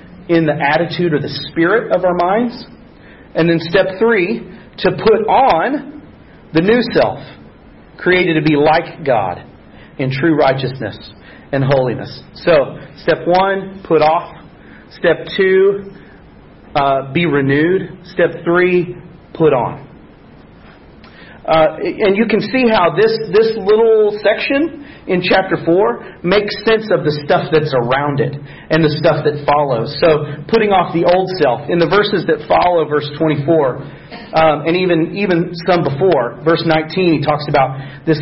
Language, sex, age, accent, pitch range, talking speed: English, male, 40-59, American, 145-180 Hz, 150 wpm